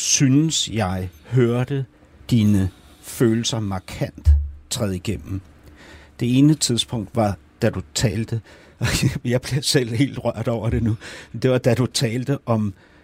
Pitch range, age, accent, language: 80-120 Hz, 60-79, native, Danish